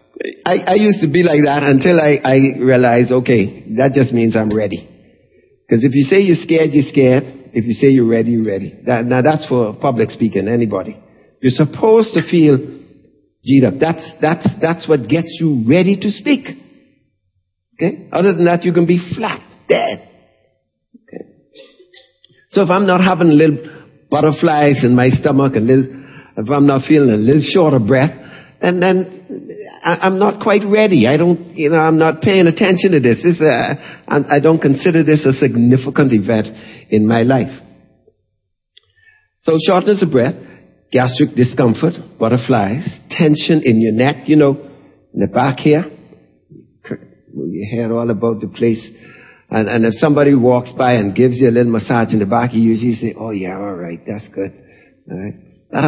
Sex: male